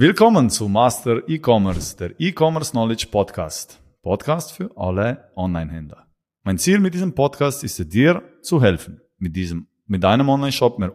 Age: 30-49